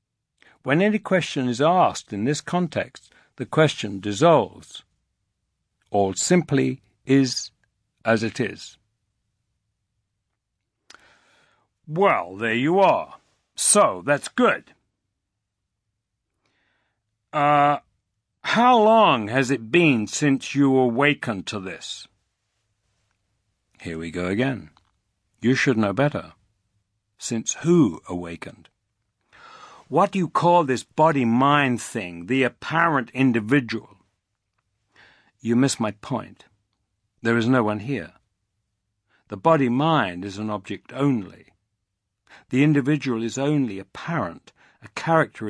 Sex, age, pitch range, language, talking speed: male, 60-79, 105-140 Hz, English, 105 wpm